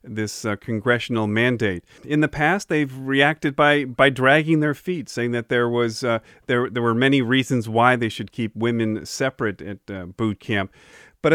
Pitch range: 115-140 Hz